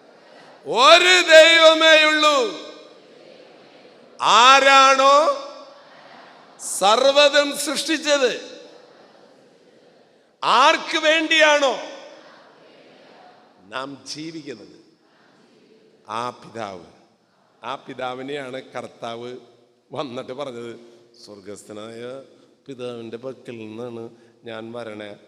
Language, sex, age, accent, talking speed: English, male, 50-69, Indian, 40 wpm